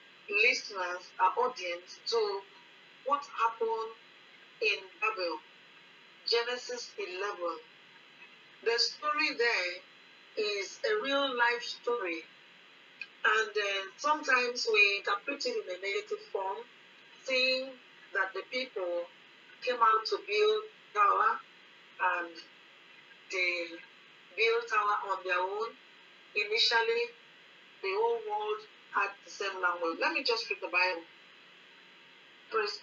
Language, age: English, 40-59